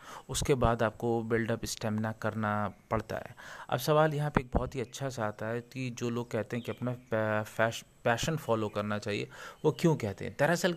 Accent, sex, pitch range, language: native, male, 110-135 Hz, Hindi